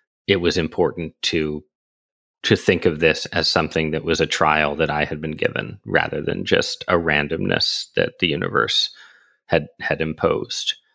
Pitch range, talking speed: 80-95 Hz, 165 wpm